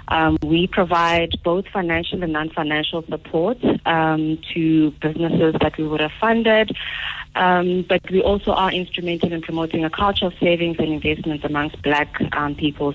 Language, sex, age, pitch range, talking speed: English, female, 30-49, 155-180 Hz, 160 wpm